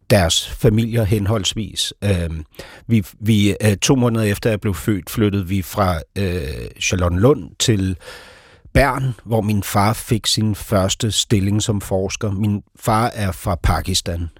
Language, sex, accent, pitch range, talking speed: Danish, male, native, 95-115 Hz, 140 wpm